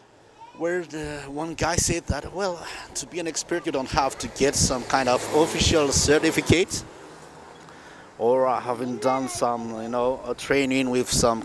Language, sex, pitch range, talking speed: English, male, 120-145 Hz, 150 wpm